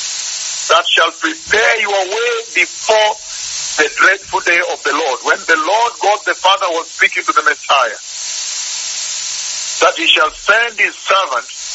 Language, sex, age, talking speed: English, male, 50-69, 150 wpm